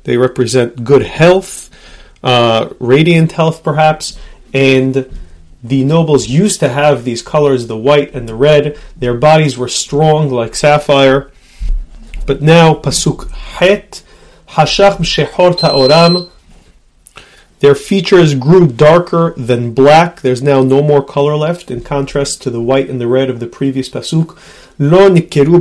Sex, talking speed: male, 130 wpm